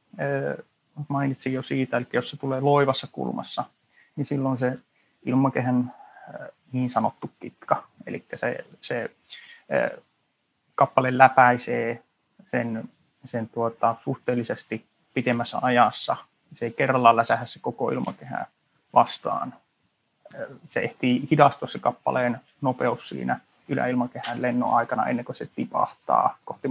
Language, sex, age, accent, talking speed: Finnish, male, 30-49, native, 110 wpm